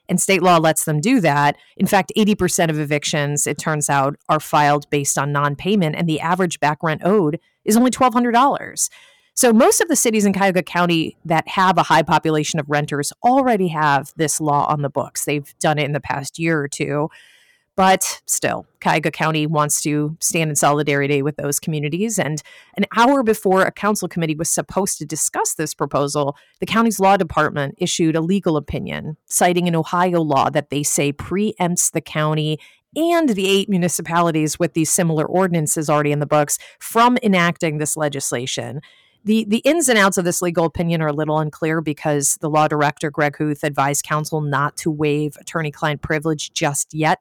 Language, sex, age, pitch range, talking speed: English, female, 30-49, 150-185 Hz, 185 wpm